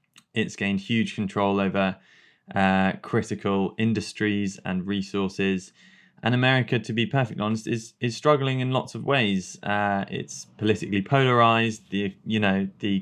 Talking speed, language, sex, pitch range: 145 wpm, English, male, 95-110 Hz